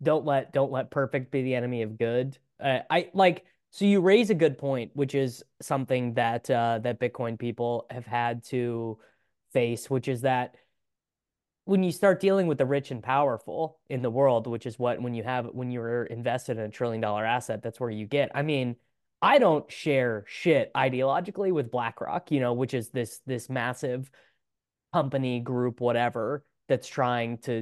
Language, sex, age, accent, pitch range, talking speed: English, male, 20-39, American, 120-145 Hz, 185 wpm